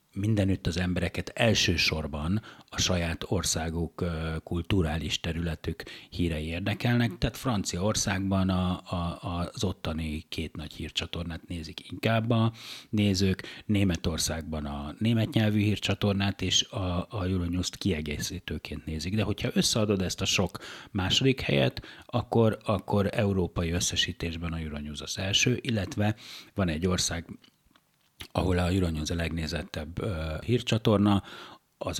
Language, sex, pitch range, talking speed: Hungarian, male, 85-105 Hz, 115 wpm